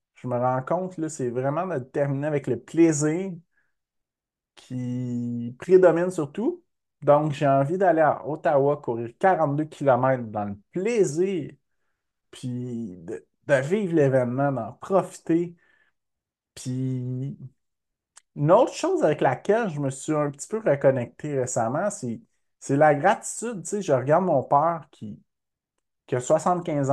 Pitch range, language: 130-165 Hz, French